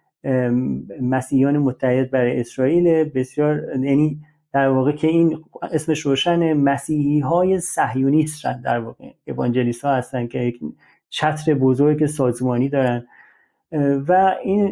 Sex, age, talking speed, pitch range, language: male, 30-49, 115 wpm, 140-180 Hz, Persian